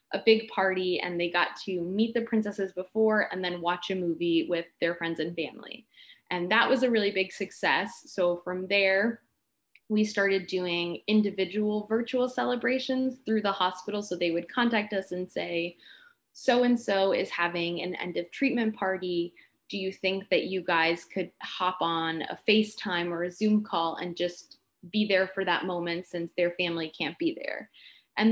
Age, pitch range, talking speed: 20-39, 175-215 Hz, 180 wpm